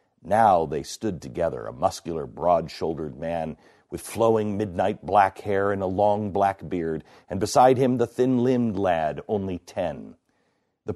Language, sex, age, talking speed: English, male, 50-69, 150 wpm